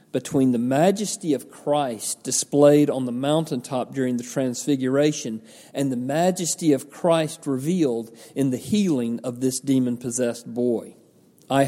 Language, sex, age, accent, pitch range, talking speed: English, male, 40-59, American, 125-170 Hz, 135 wpm